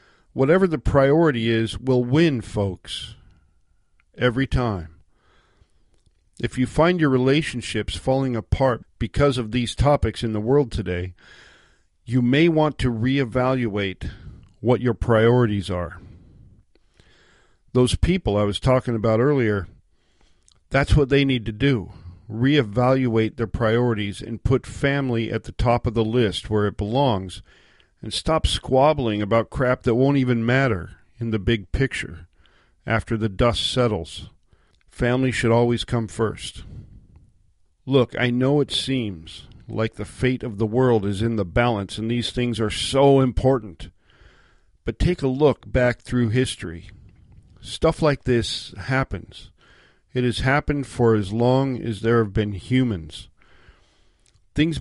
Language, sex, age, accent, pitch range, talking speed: English, male, 50-69, American, 100-130 Hz, 140 wpm